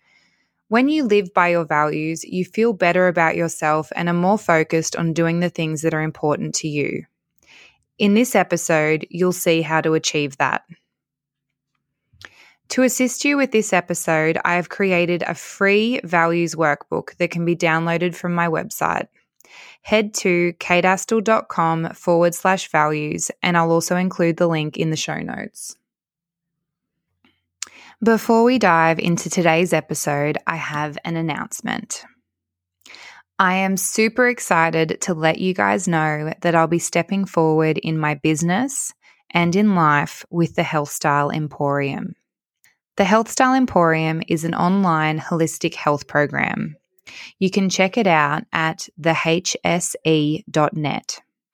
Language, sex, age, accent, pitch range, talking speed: English, female, 20-39, Australian, 155-185 Hz, 140 wpm